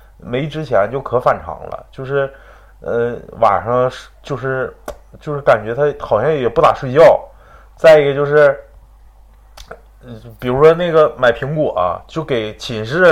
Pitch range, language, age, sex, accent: 125-185 Hz, Chinese, 20-39, male, native